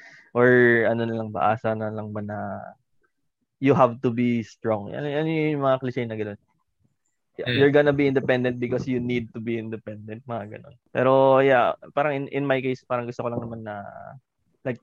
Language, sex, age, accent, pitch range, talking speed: Filipino, male, 20-39, native, 115-140 Hz, 190 wpm